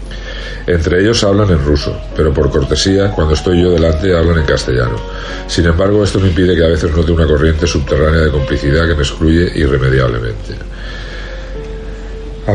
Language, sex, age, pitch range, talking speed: Spanish, male, 50-69, 75-95 Hz, 165 wpm